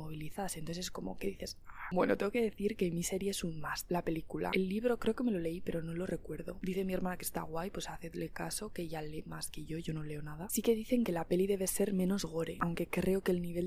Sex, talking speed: female, 270 wpm